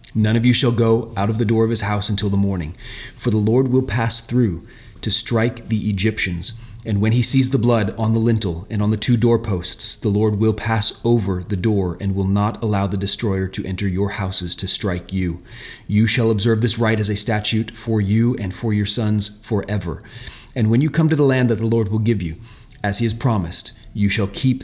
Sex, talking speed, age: male, 230 wpm, 30-49